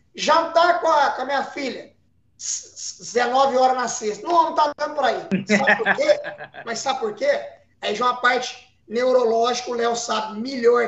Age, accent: 20-39, Brazilian